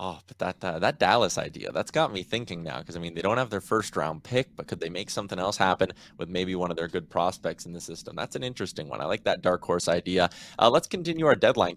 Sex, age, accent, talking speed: male, 20-39, American, 275 wpm